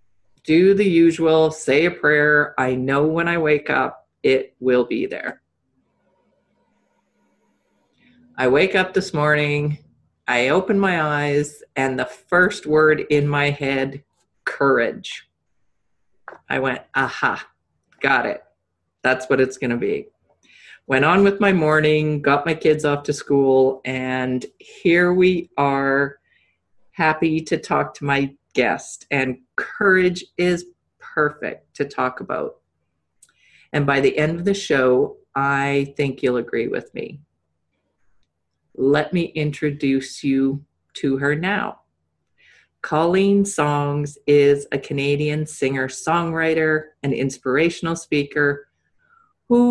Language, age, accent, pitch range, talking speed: English, 40-59, American, 135-170 Hz, 125 wpm